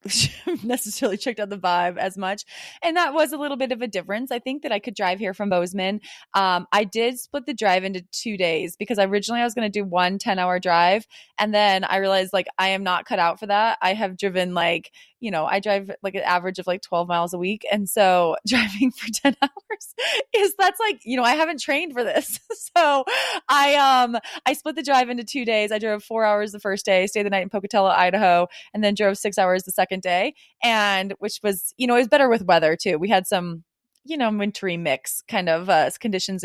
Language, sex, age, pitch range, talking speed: English, female, 20-39, 185-245 Hz, 235 wpm